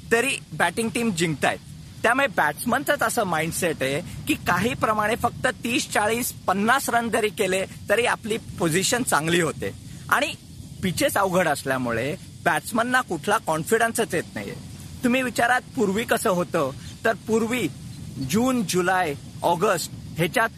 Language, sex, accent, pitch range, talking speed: Marathi, male, native, 155-225 Hz, 130 wpm